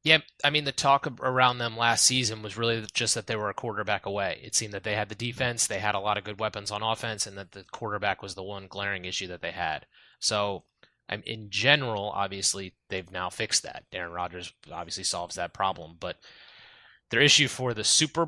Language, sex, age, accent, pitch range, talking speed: English, male, 30-49, American, 95-115 Hz, 215 wpm